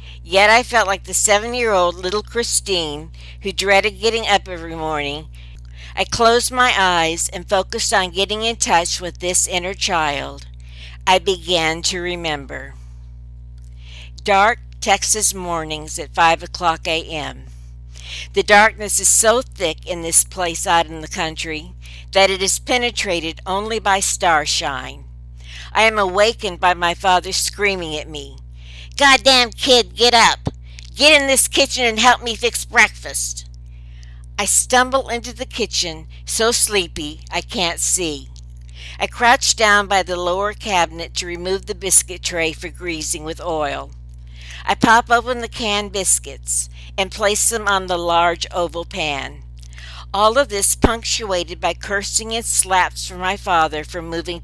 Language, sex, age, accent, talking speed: English, female, 60-79, American, 145 wpm